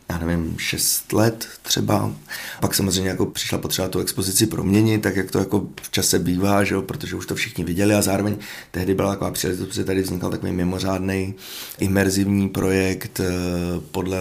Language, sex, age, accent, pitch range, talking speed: Czech, male, 30-49, native, 90-100 Hz, 170 wpm